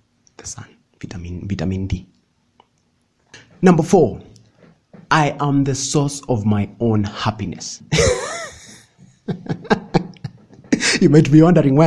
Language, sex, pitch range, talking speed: English, male, 110-150 Hz, 95 wpm